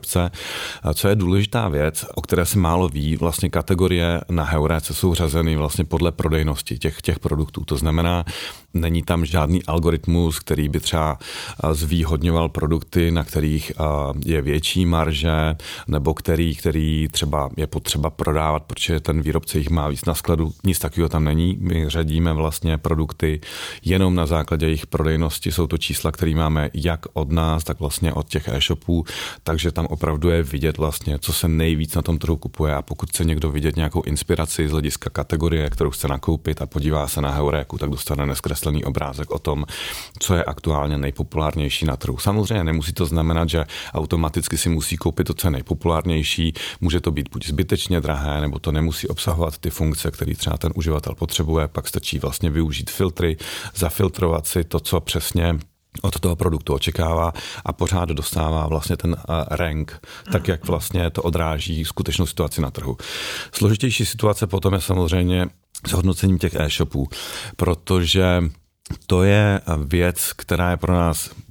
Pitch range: 75-90 Hz